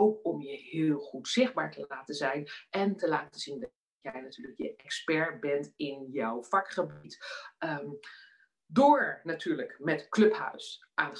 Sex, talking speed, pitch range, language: female, 150 wpm, 145-215 Hz, Dutch